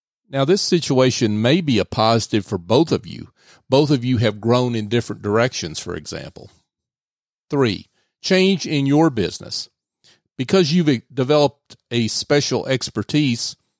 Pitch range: 105-135 Hz